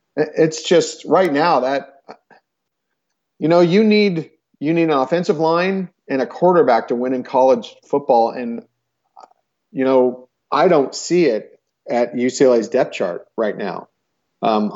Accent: American